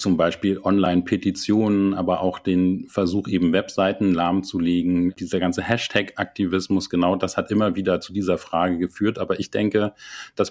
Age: 40-59